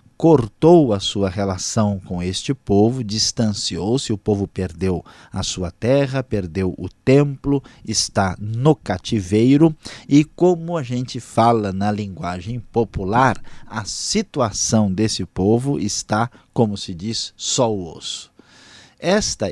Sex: male